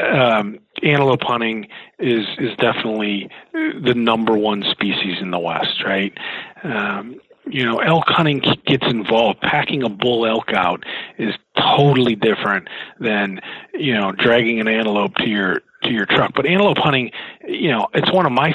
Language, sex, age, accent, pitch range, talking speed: English, male, 40-59, American, 110-130 Hz, 160 wpm